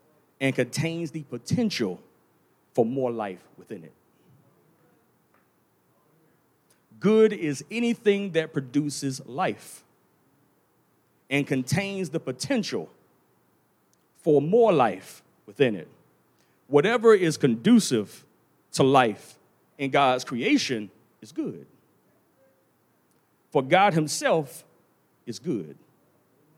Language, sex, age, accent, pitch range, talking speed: English, male, 40-59, American, 135-175 Hz, 90 wpm